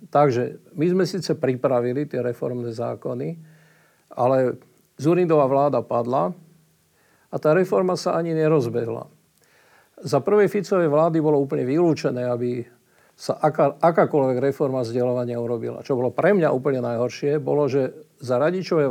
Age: 50-69